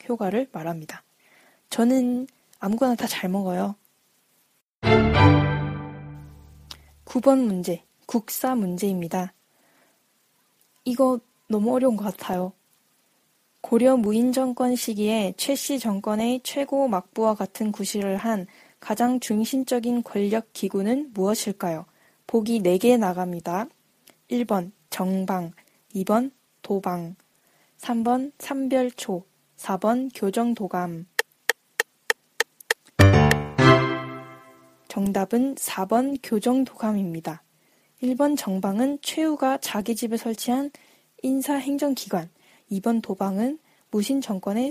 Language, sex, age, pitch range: Korean, female, 10-29, 185-255 Hz